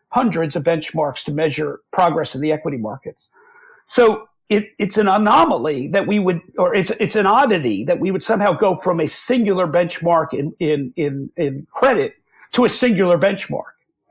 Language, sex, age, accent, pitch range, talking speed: English, male, 50-69, American, 155-205 Hz, 175 wpm